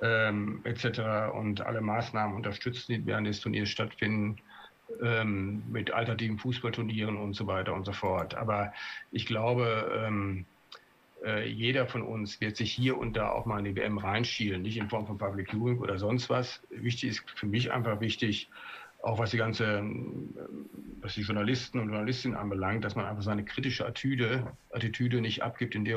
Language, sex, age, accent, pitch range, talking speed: German, male, 50-69, German, 105-120 Hz, 180 wpm